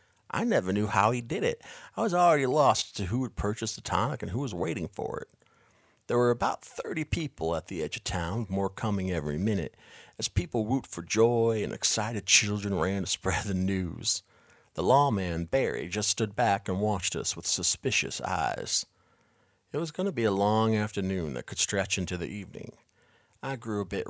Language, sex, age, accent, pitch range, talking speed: English, male, 50-69, American, 95-115 Hz, 200 wpm